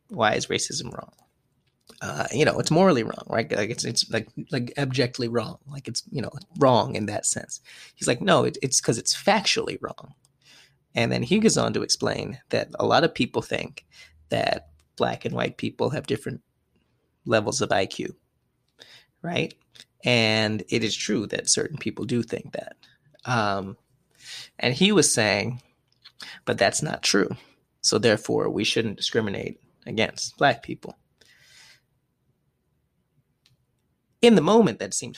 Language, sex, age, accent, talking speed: English, male, 20-39, American, 155 wpm